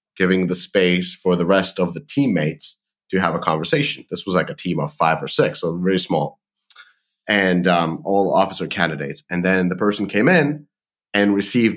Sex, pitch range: male, 90-110 Hz